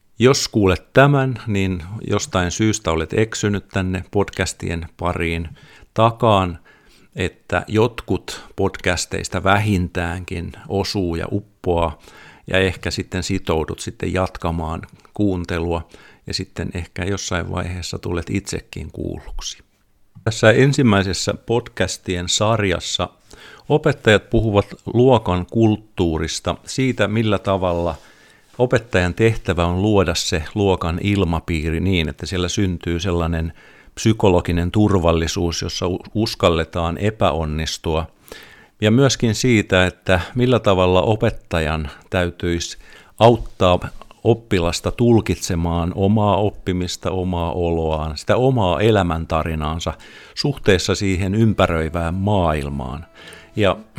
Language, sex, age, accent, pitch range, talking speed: Finnish, male, 50-69, native, 85-105 Hz, 95 wpm